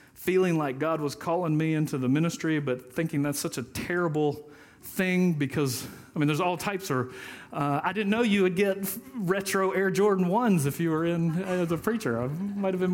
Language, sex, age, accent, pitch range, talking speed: English, male, 40-59, American, 135-175 Hz, 220 wpm